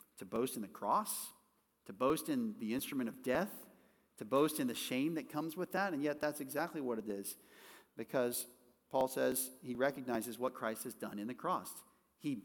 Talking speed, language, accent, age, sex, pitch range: 200 wpm, English, American, 40-59, male, 125-180 Hz